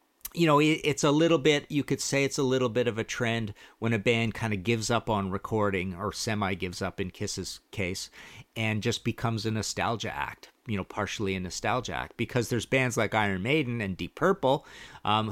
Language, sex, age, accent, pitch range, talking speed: English, male, 50-69, American, 100-140 Hz, 210 wpm